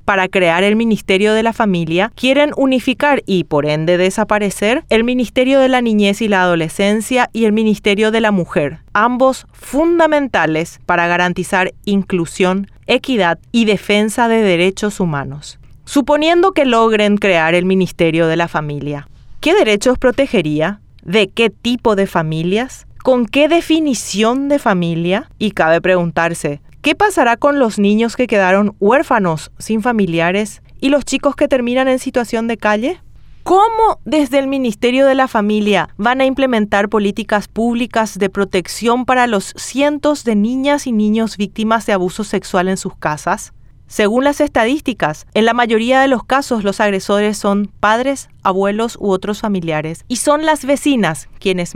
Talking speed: 155 wpm